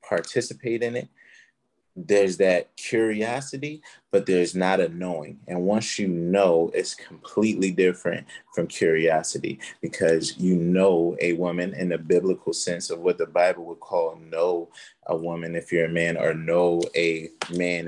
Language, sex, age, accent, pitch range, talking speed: English, male, 30-49, American, 85-100 Hz, 155 wpm